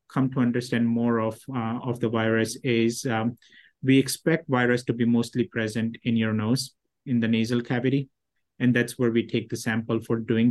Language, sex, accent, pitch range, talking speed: English, male, Indian, 115-130 Hz, 195 wpm